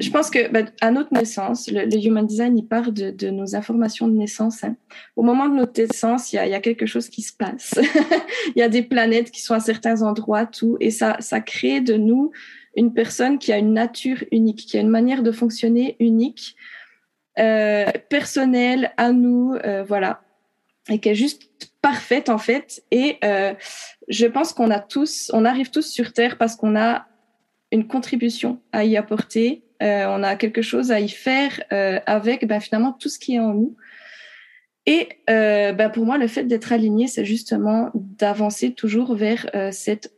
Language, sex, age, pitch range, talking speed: French, female, 20-39, 215-245 Hz, 200 wpm